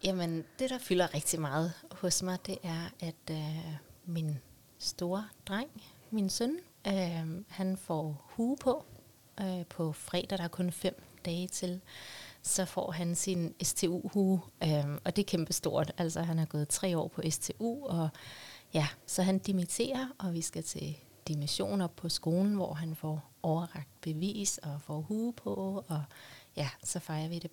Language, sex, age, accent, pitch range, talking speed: Danish, female, 30-49, native, 155-190 Hz, 155 wpm